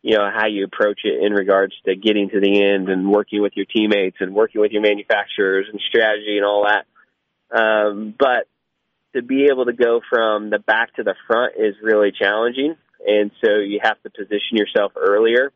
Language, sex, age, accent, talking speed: English, male, 20-39, American, 200 wpm